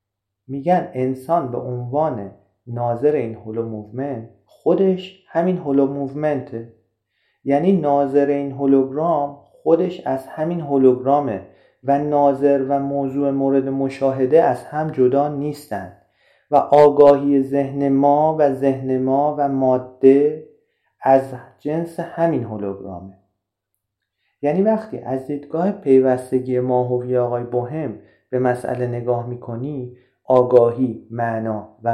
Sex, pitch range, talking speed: male, 110-140 Hz, 105 wpm